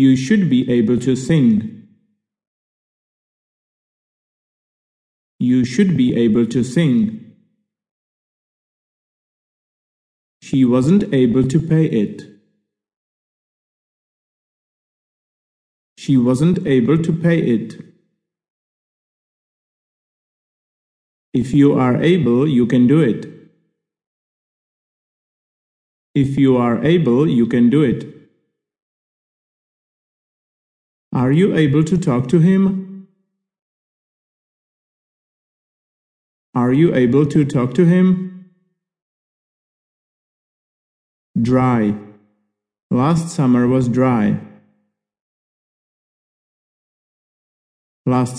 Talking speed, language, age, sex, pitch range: 75 wpm, English, 50-69, male, 125-175 Hz